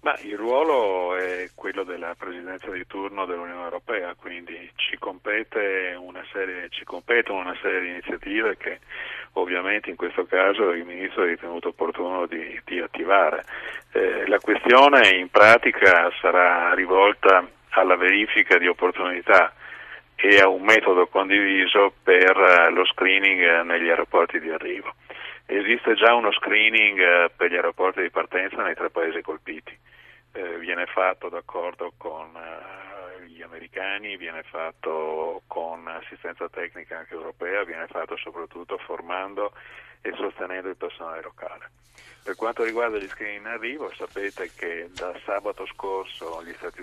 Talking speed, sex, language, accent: 135 wpm, male, Italian, native